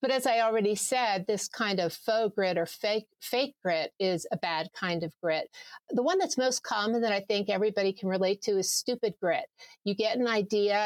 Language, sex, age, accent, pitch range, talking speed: English, female, 50-69, American, 190-245 Hz, 215 wpm